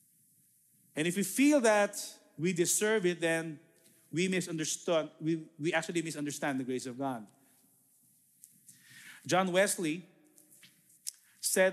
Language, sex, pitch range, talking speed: English, male, 155-195 Hz, 105 wpm